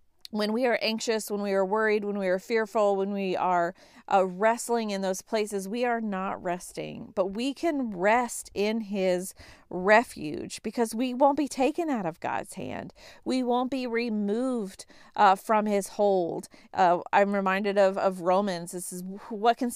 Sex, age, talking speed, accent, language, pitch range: female, 40-59, 175 wpm, American, English, 185-220 Hz